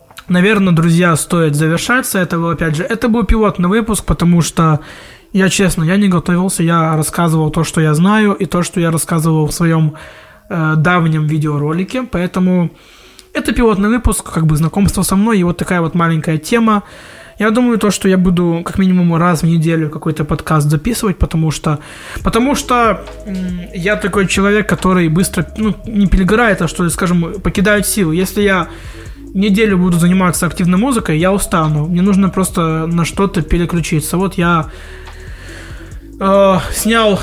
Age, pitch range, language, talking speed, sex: 20-39, 160-205 Hz, Russian, 165 wpm, male